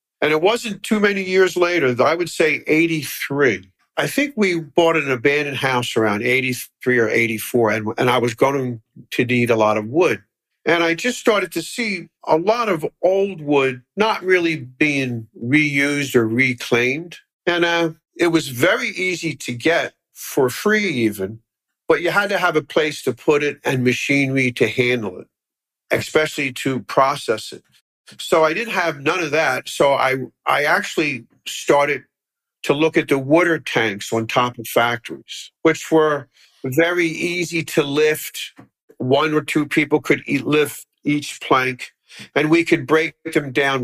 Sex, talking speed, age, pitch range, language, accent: male, 165 wpm, 50-69, 125-165 Hz, English, American